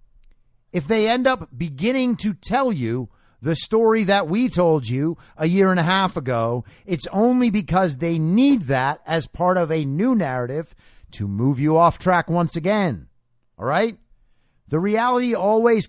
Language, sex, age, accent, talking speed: English, male, 50-69, American, 165 wpm